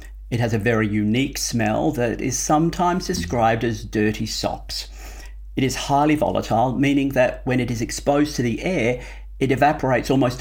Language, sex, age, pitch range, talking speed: English, male, 50-69, 110-145 Hz, 165 wpm